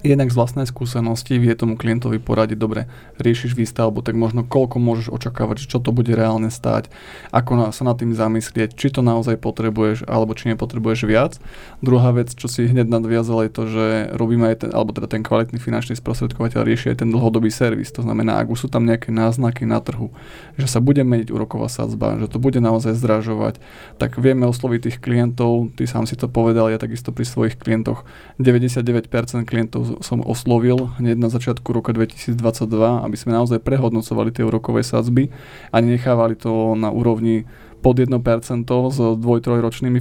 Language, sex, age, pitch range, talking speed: Slovak, male, 20-39, 115-125 Hz, 175 wpm